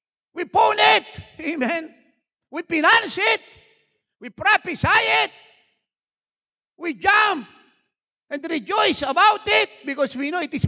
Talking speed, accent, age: 120 wpm, Filipino, 50-69